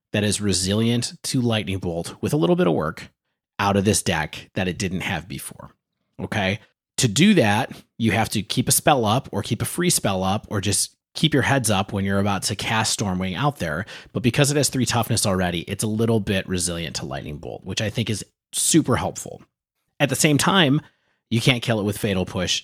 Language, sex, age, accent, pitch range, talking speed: English, male, 30-49, American, 95-120 Hz, 225 wpm